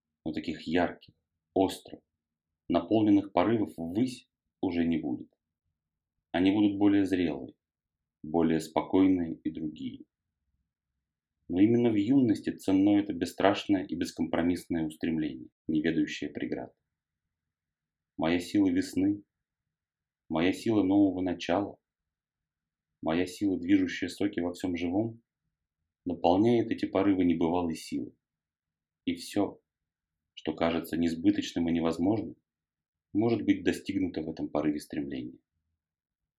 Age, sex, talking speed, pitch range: 30-49, male, 105 wpm, 80-120 Hz